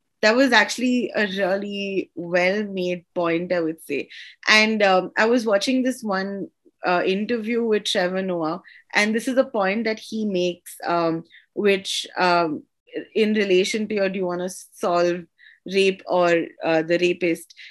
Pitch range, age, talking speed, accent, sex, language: 185-245 Hz, 20-39, 160 wpm, Indian, female, English